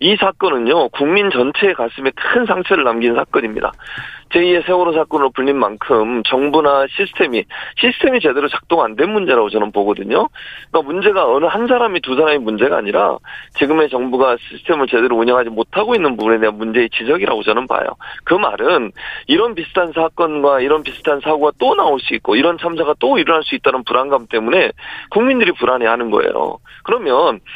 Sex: male